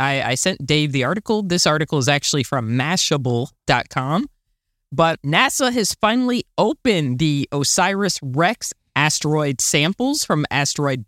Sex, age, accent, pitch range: male, 20-39, American, 130-175 Hz